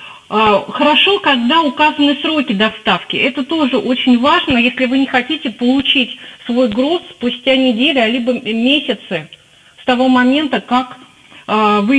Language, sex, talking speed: Russian, female, 130 wpm